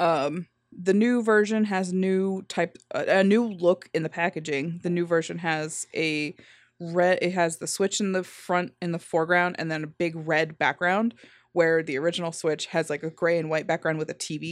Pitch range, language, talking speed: 160-190 Hz, English, 205 wpm